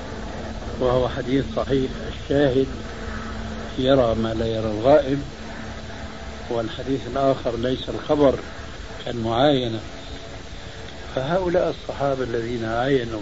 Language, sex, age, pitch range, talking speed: Arabic, male, 70-89, 95-140 Hz, 80 wpm